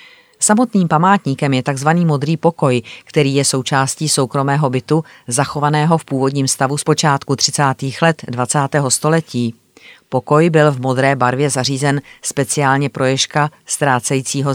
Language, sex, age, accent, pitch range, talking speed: Czech, female, 30-49, native, 130-155 Hz, 130 wpm